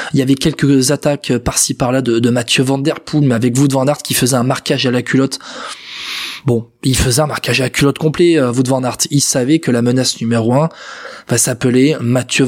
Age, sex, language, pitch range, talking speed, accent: 20-39, male, French, 125-155 Hz, 220 wpm, French